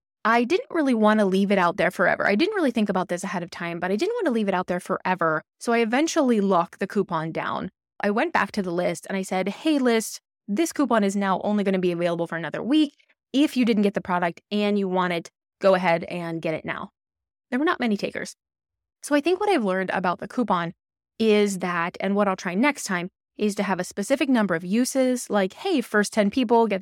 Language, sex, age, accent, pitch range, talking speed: English, female, 20-39, American, 180-235 Hz, 250 wpm